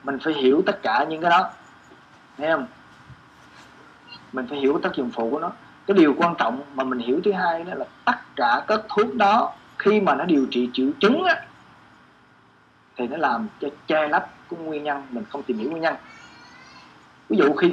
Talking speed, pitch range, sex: 205 wpm, 125-185 Hz, male